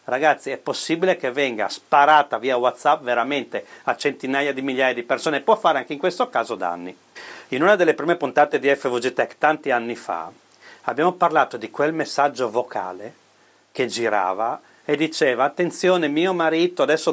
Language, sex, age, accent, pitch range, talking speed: Italian, male, 40-59, native, 130-170 Hz, 165 wpm